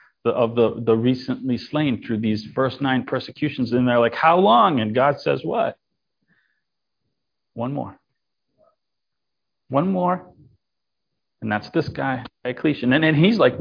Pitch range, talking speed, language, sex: 115-140 Hz, 140 wpm, English, male